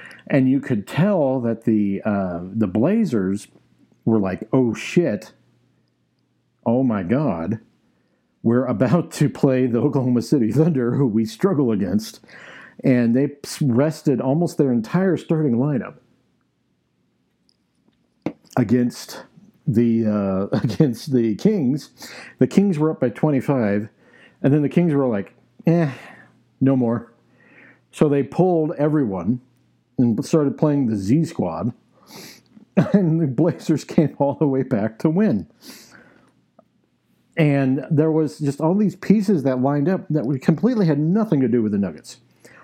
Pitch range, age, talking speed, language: 115-155 Hz, 50-69, 135 wpm, English